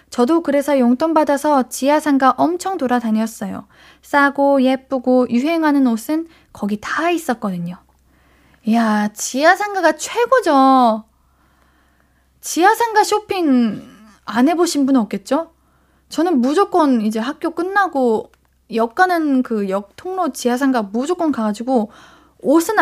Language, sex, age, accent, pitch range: Korean, female, 20-39, native, 225-330 Hz